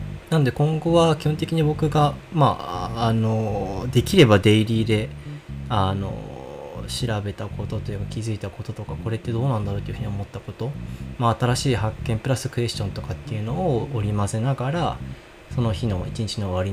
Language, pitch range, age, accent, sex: Japanese, 100-125 Hz, 20-39, native, male